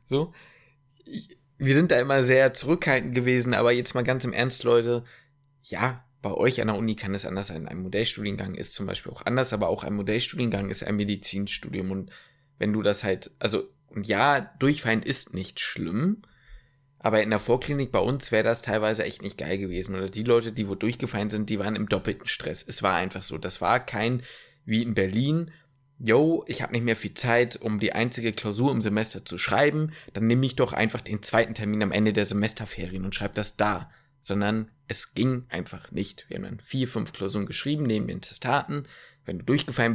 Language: German